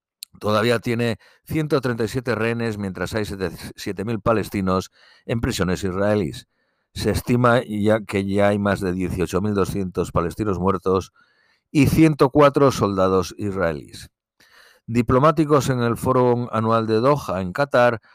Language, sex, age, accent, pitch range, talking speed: Spanish, male, 60-79, Spanish, 95-120 Hz, 115 wpm